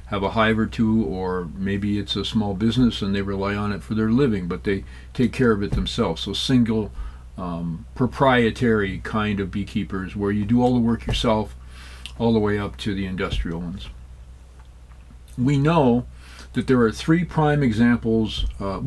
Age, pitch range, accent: 50-69, 90-120 Hz, American